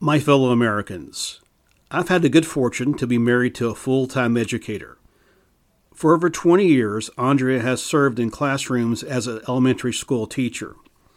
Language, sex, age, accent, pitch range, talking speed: English, male, 50-69, American, 120-145 Hz, 160 wpm